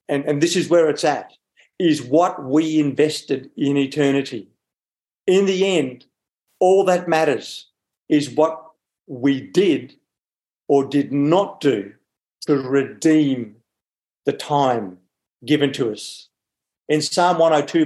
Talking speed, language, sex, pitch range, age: 125 wpm, English, male, 140-170 Hz, 50-69